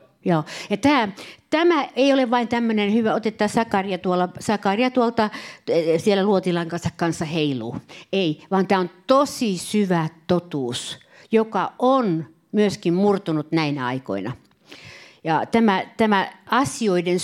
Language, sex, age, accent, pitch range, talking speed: Finnish, female, 60-79, native, 165-230 Hz, 120 wpm